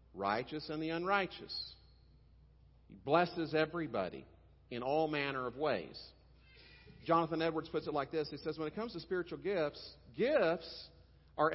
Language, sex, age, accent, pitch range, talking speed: English, male, 50-69, American, 130-175 Hz, 145 wpm